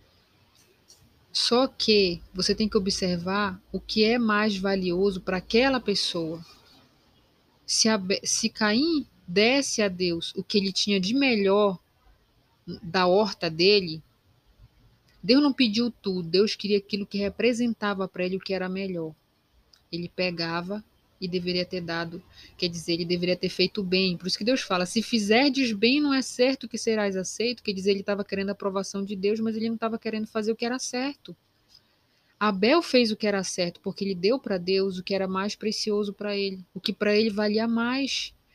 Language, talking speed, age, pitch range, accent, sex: Portuguese, 180 wpm, 20-39, 180-220 Hz, Brazilian, female